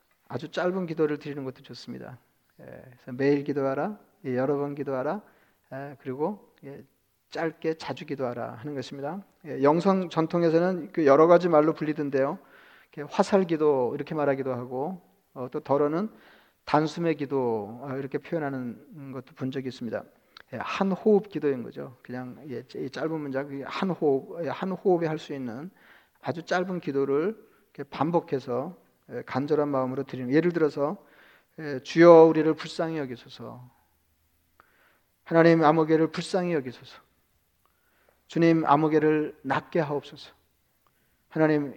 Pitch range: 135-165 Hz